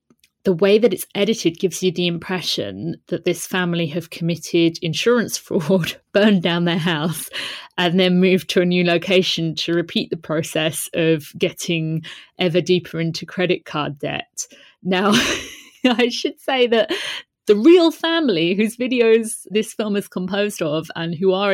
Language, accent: English, British